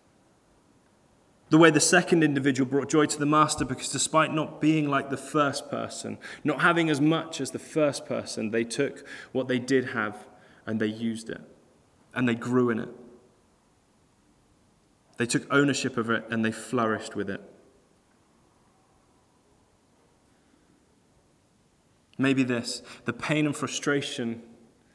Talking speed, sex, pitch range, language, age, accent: 135 wpm, male, 115-135 Hz, English, 20-39, British